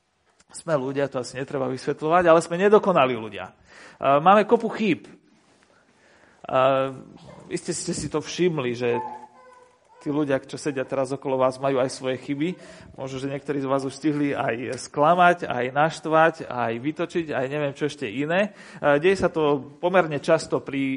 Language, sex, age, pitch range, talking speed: Slovak, male, 40-59, 140-175 Hz, 155 wpm